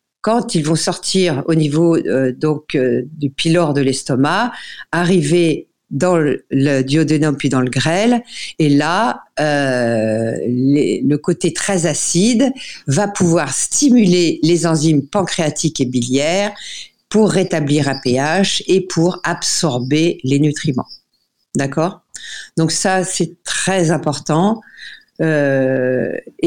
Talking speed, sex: 120 wpm, female